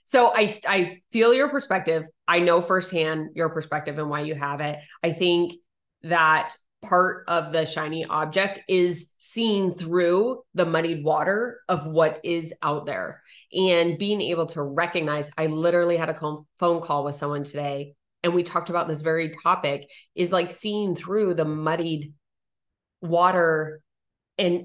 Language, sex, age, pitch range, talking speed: English, female, 20-39, 155-190 Hz, 155 wpm